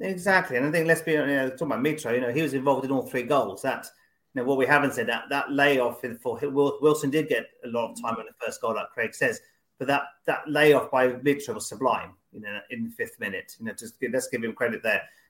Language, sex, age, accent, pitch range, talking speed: English, male, 30-49, British, 125-155 Hz, 265 wpm